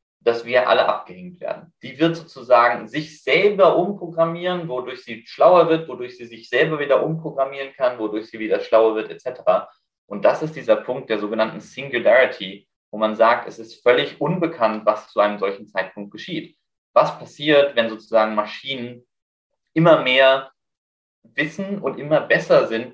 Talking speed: 160 wpm